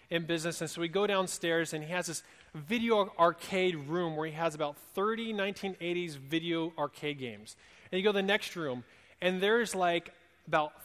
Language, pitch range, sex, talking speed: English, 140-185 Hz, male, 190 wpm